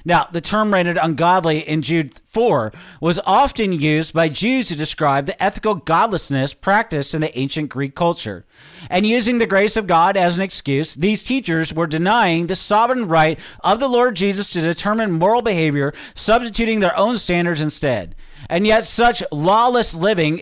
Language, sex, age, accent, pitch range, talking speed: English, male, 40-59, American, 160-210 Hz, 170 wpm